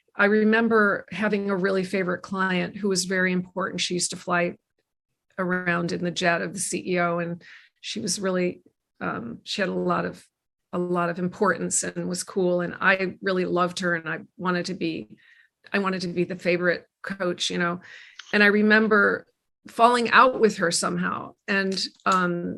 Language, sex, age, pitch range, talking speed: English, female, 40-59, 180-220 Hz, 180 wpm